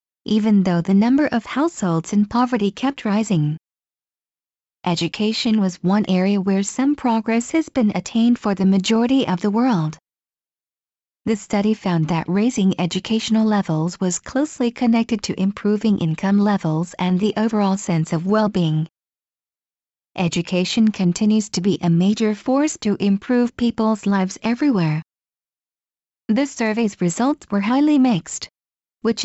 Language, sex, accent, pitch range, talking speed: English, female, American, 185-235 Hz, 135 wpm